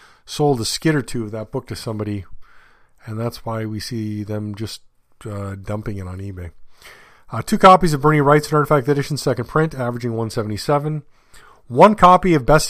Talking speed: 185 wpm